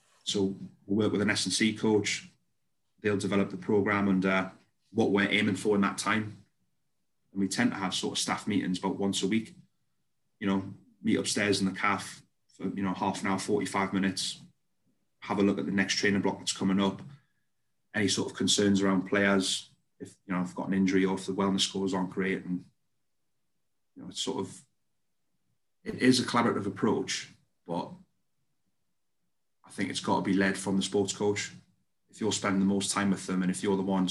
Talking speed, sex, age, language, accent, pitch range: 200 wpm, male, 30-49, English, British, 95-100 Hz